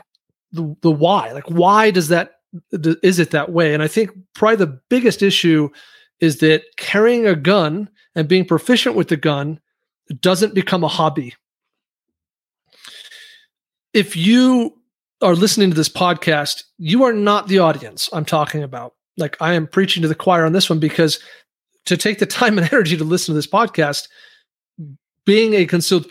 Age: 30-49